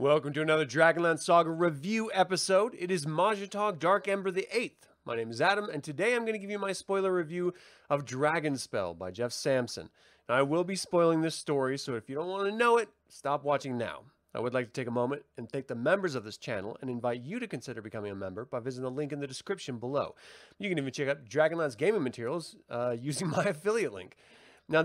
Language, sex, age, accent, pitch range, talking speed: English, male, 30-49, American, 125-180 Hz, 230 wpm